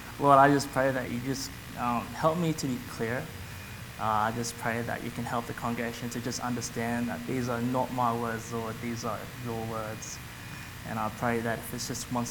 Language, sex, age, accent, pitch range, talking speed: English, male, 20-39, Australian, 115-135 Hz, 220 wpm